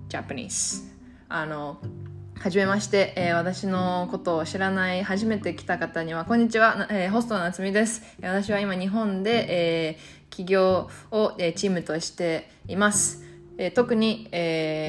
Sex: female